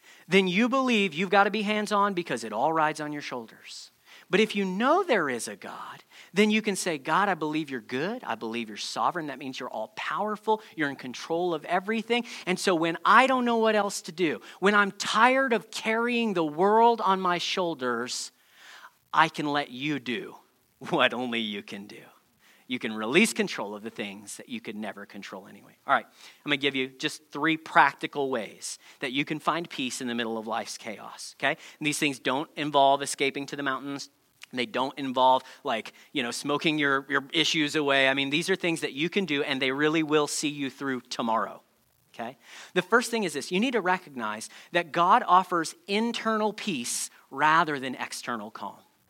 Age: 40-59